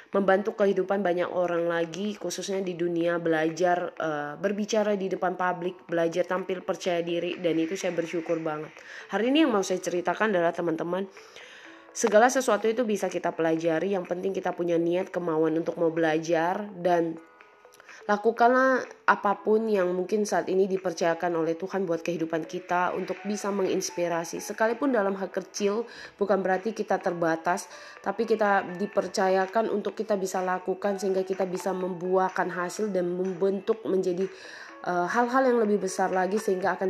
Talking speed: 150 wpm